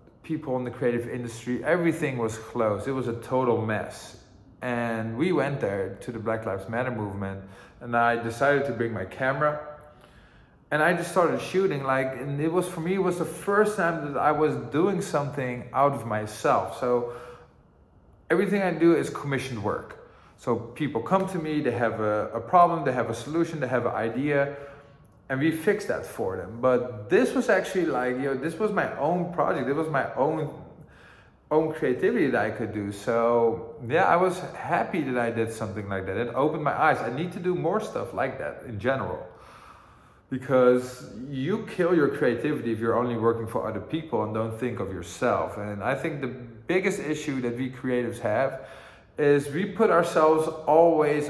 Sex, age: male, 20-39